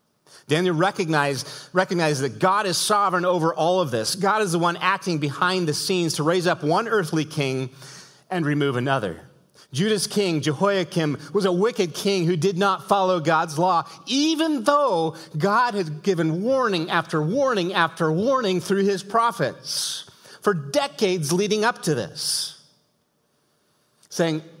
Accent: American